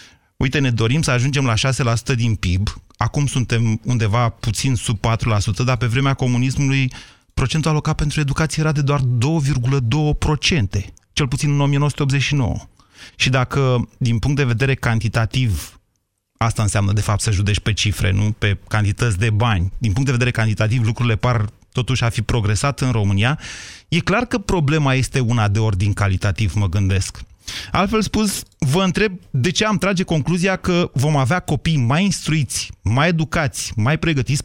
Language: Romanian